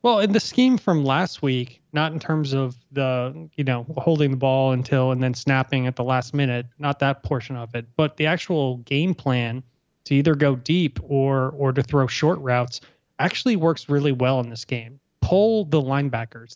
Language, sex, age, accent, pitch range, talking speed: English, male, 20-39, American, 130-155 Hz, 200 wpm